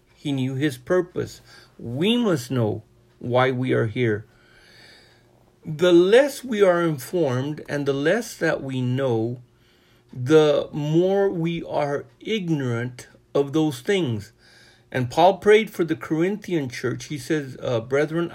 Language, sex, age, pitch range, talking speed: English, male, 50-69, 125-170 Hz, 135 wpm